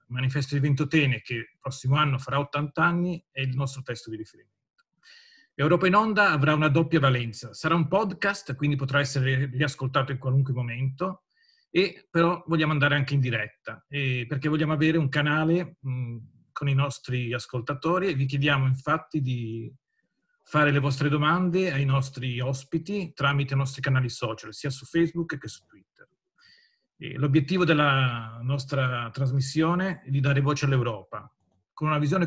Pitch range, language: 130-155 Hz, Italian